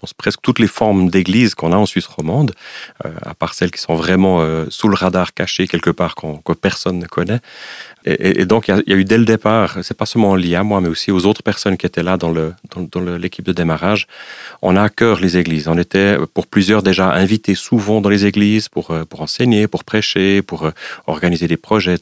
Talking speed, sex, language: 245 wpm, male, French